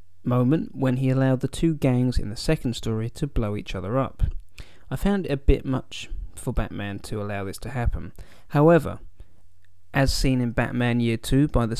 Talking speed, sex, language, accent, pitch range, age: 195 wpm, male, English, British, 105-140 Hz, 20-39